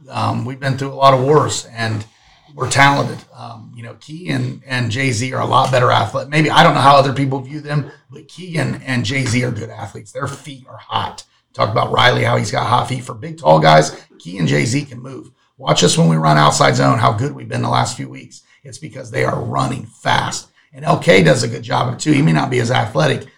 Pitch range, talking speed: 120-140 Hz, 250 wpm